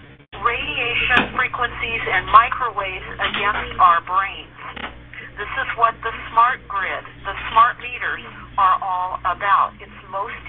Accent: American